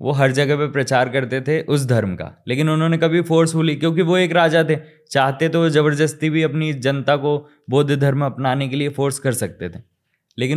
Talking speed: 215 wpm